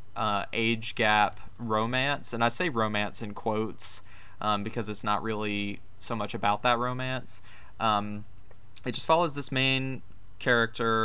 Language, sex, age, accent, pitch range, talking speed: English, male, 20-39, American, 105-120 Hz, 145 wpm